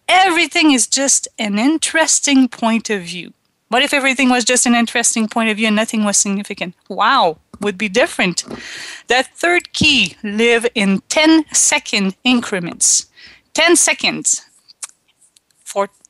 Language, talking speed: English, 140 wpm